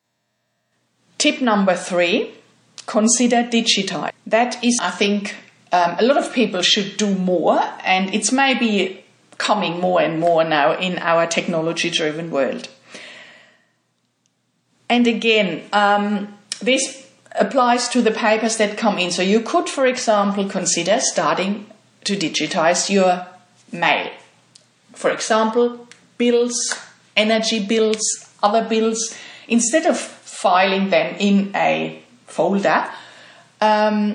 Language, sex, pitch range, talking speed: English, female, 180-225 Hz, 115 wpm